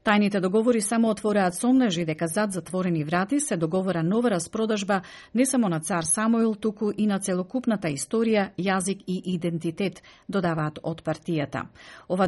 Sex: female